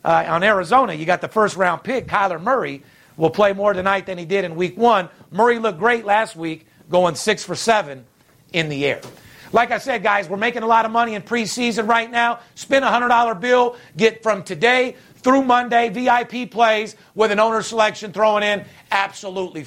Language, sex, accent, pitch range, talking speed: English, male, American, 195-235 Hz, 195 wpm